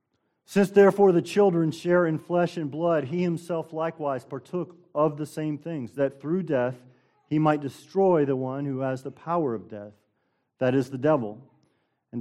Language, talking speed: English, 175 wpm